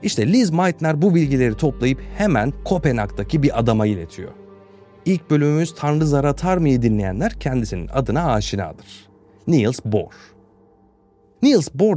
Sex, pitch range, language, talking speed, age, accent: male, 105-170 Hz, Turkish, 120 wpm, 40-59, native